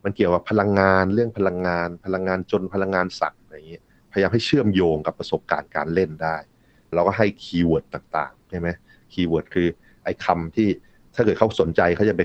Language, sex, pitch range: Thai, male, 95-120 Hz